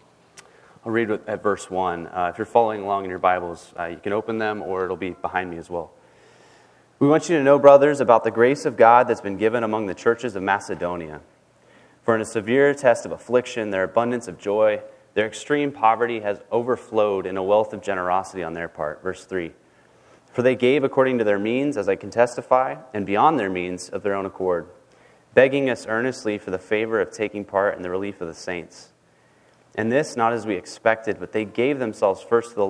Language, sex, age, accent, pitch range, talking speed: English, male, 30-49, American, 100-125 Hz, 215 wpm